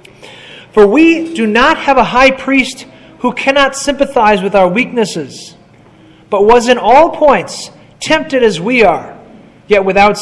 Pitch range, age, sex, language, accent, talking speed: 190-250 Hz, 30-49, male, English, American, 145 wpm